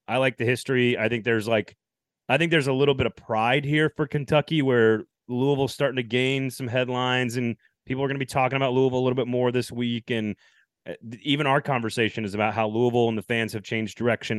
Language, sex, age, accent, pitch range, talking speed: English, male, 30-49, American, 110-140 Hz, 230 wpm